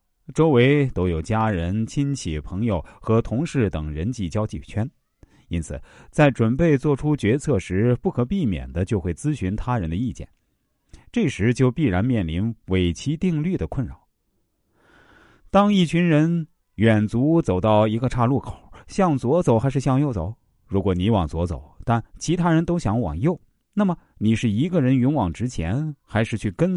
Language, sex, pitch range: Chinese, male, 90-130 Hz